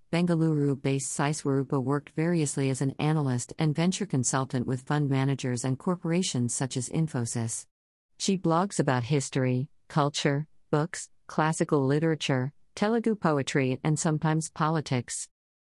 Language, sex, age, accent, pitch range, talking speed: English, female, 50-69, American, 130-160 Hz, 120 wpm